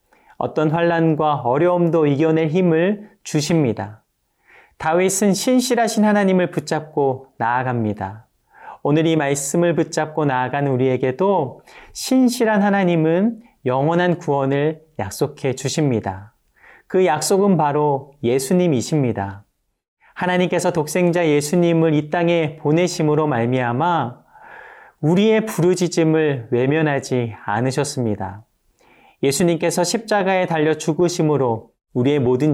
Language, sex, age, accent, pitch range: Korean, male, 40-59, native, 135-180 Hz